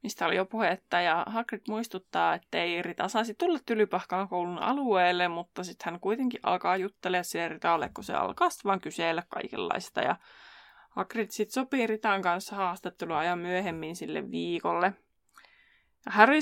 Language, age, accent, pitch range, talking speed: Finnish, 20-39, native, 180-225 Hz, 145 wpm